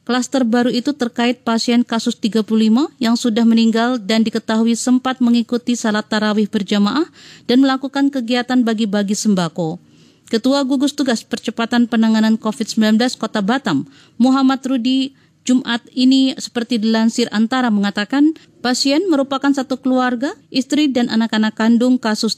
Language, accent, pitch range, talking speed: Indonesian, native, 210-255 Hz, 125 wpm